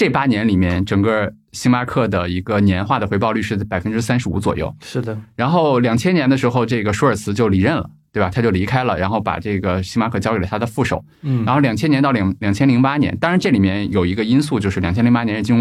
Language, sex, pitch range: Chinese, male, 100-130 Hz